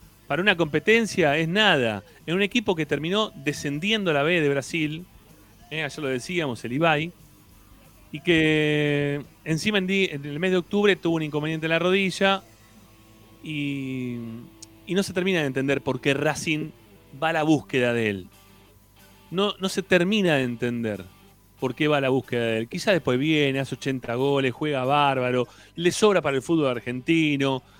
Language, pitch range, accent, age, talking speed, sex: Spanish, 125-170 Hz, Argentinian, 30-49, 170 wpm, male